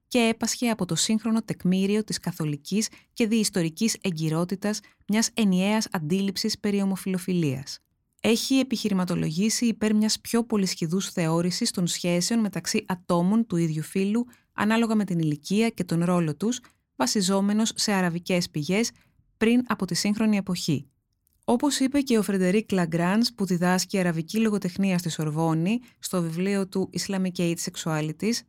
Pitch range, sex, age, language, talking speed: 170-220 Hz, female, 20-39, Greek, 135 wpm